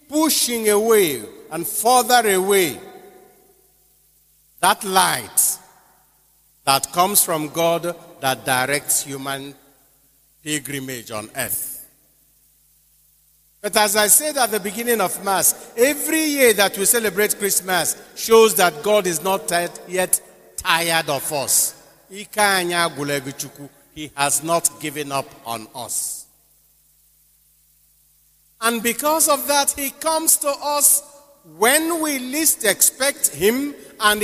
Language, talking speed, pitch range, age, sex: English, 110 wpm, 150-240 Hz, 50-69, male